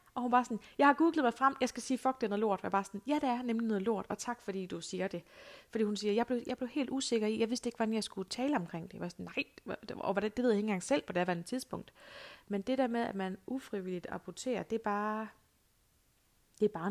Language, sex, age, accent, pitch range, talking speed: Danish, female, 30-49, native, 195-235 Hz, 290 wpm